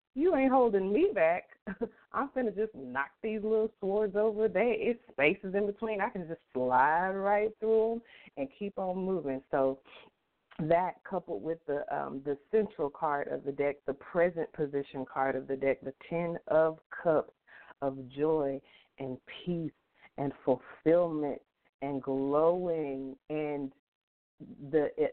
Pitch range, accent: 135-185 Hz, American